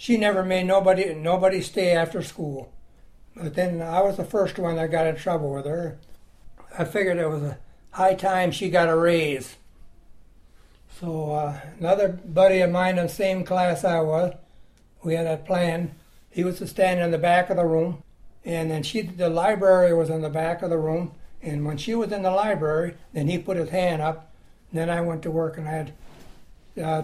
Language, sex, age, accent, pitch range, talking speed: English, male, 60-79, American, 155-185 Hz, 205 wpm